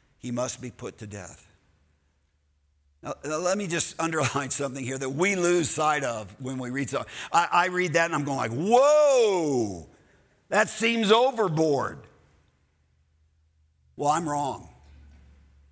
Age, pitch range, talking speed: 50-69, 105-160 Hz, 140 wpm